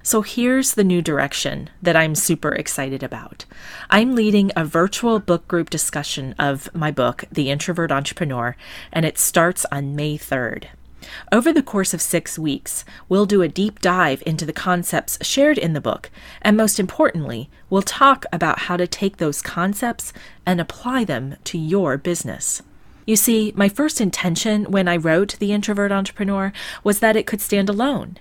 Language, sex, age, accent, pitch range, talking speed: English, female, 30-49, American, 155-205 Hz, 170 wpm